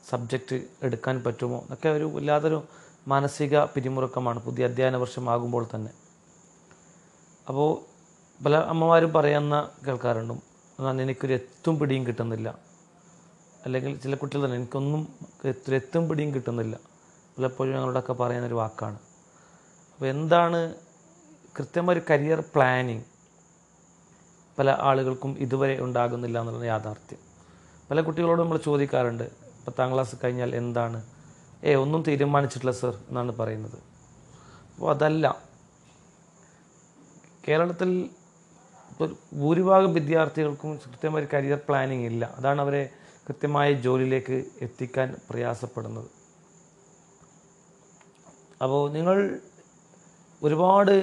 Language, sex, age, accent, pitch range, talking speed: Malayalam, male, 30-49, native, 125-165 Hz, 90 wpm